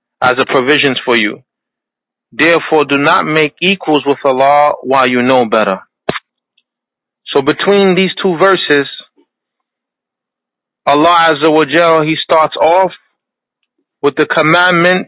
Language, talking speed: English, 125 wpm